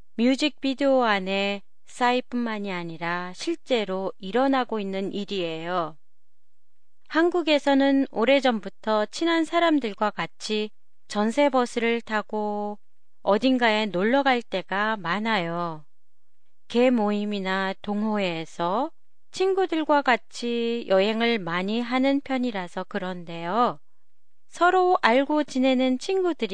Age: 30-49